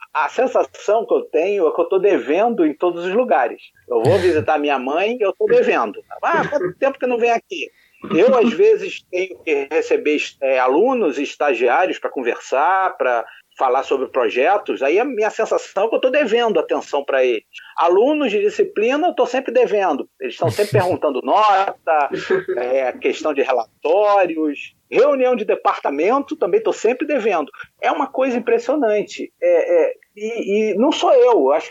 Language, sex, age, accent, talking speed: Portuguese, male, 40-59, Brazilian, 170 wpm